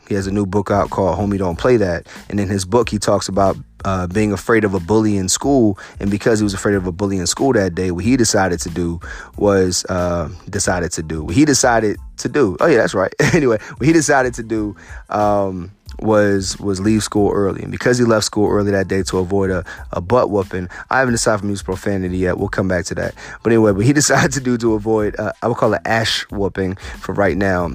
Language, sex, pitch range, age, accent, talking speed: English, male, 95-110 Hz, 30-49, American, 245 wpm